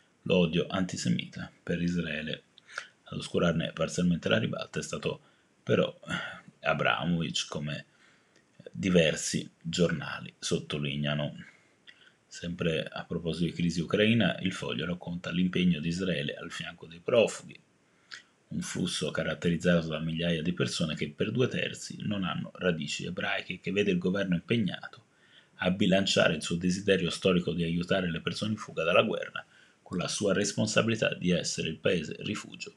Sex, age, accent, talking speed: male, 30-49, native, 140 wpm